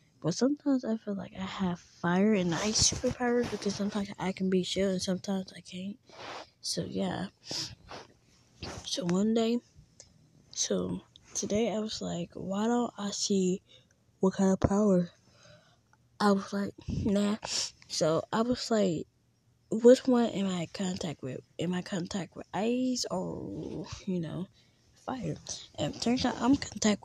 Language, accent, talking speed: English, American, 155 wpm